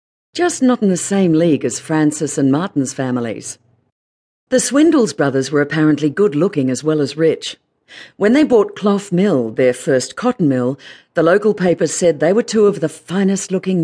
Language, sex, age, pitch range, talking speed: English, female, 50-69, 140-195 Hz, 175 wpm